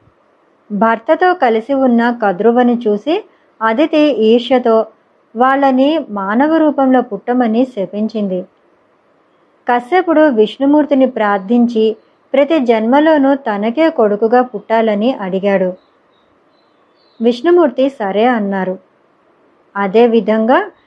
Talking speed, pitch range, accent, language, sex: 70 wpm, 215-285 Hz, native, Telugu, male